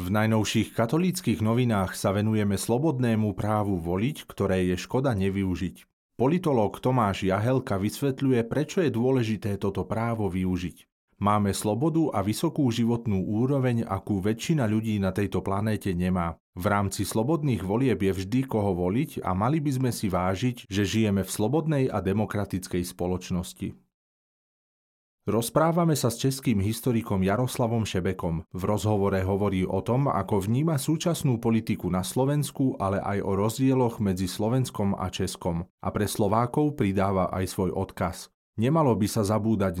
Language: Slovak